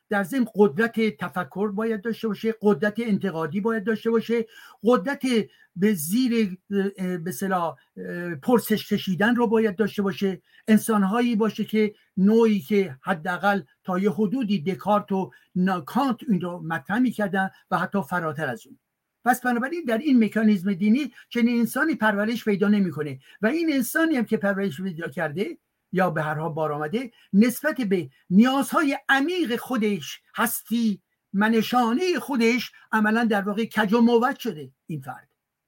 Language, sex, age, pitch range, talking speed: Persian, male, 60-79, 185-235 Hz, 140 wpm